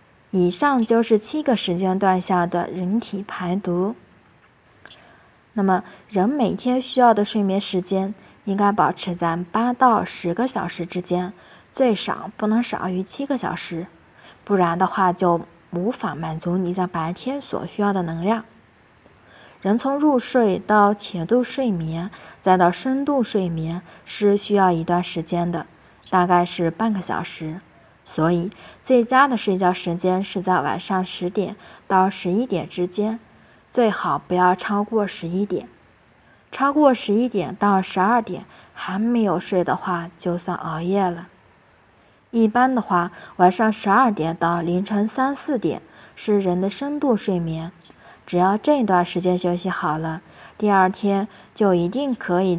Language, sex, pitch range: Chinese, female, 180-220 Hz